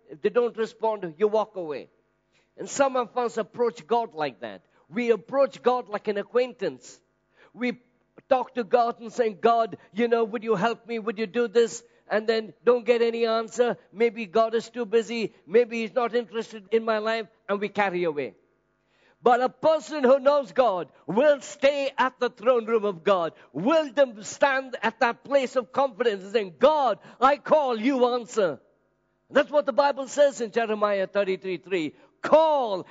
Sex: male